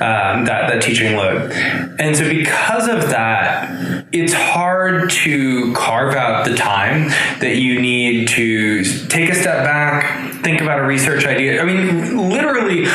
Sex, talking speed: male, 155 wpm